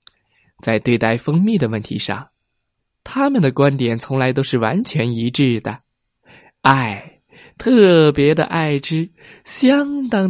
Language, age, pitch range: Chinese, 20-39, 125-175 Hz